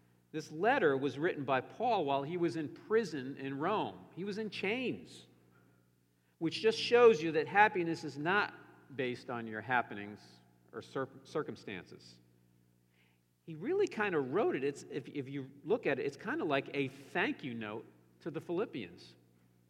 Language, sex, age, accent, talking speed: English, male, 50-69, American, 165 wpm